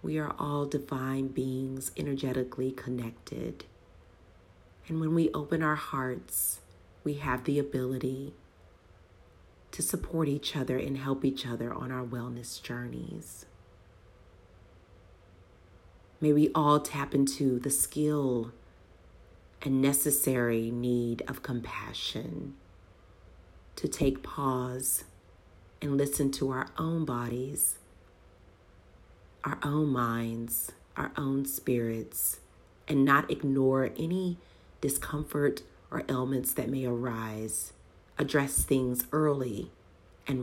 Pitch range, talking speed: 95-135 Hz, 105 wpm